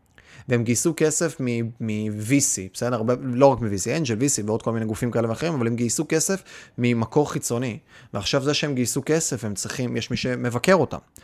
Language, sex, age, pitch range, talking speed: Hebrew, male, 30-49, 115-155 Hz, 180 wpm